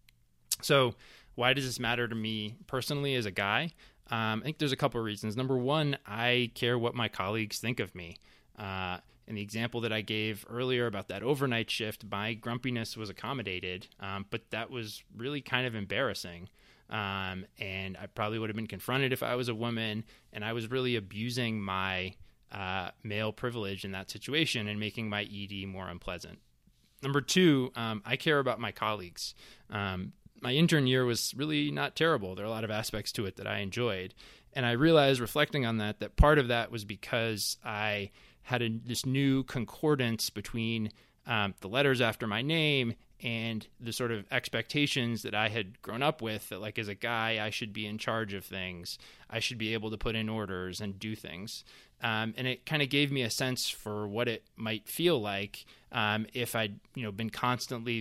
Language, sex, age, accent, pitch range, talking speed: English, male, 20-39, American, 105-125 Hz, 200 wpm